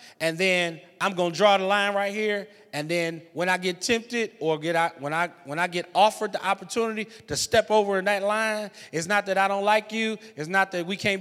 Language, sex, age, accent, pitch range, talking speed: English, male, 30-49, American, 175-240 Hz, 240 wpm